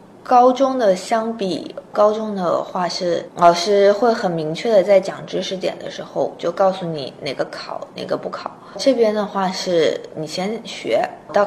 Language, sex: Chinese, female